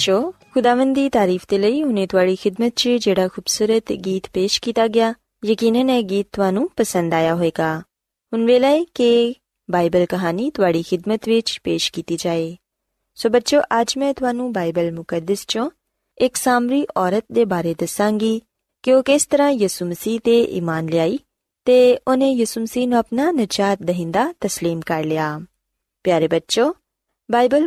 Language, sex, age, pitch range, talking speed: Punjabi, female, 20-39, 175-250 Hz, 80 wpm